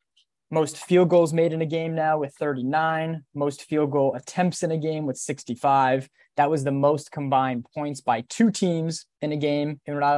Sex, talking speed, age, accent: male, 195 wpm, 20-39, American